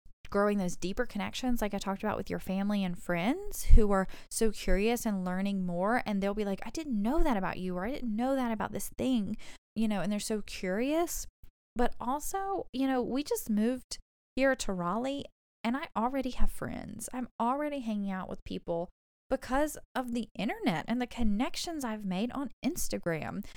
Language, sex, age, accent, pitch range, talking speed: English, female, 10-29, American, 205-270 Hz, 195 wpm